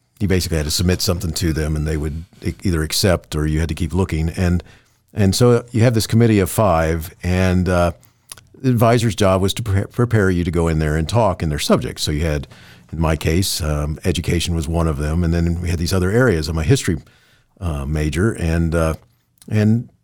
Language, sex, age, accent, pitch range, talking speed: English, male, 50-69, American, 80-110 Hz, 220 wpm